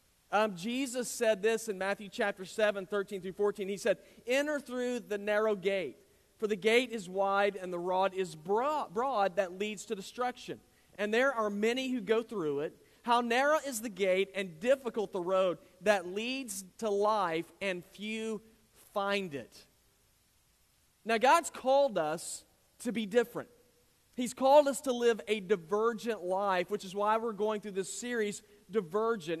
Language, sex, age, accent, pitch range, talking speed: English, male, 40-59, American, 200-245 Hz, 165 wpm